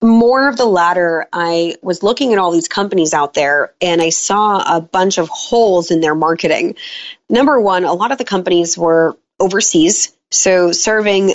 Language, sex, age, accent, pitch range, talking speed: English, female, 30-49, American, 170-210 Hz, 180 wpm